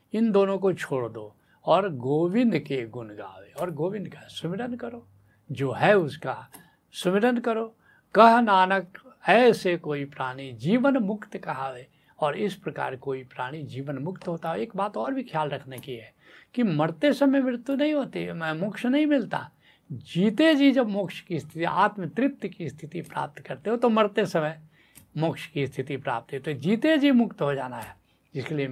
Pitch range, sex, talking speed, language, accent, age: 135-200 Hz, male, 175 wpm, Hindi, native, 70-89